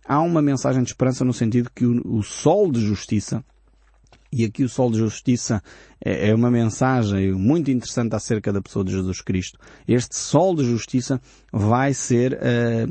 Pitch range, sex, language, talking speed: 105-135 Hz, male, Portuguese, 165 wpm